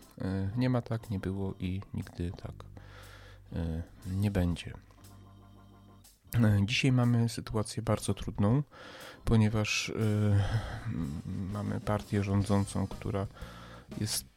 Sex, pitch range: male, 95-105 Hz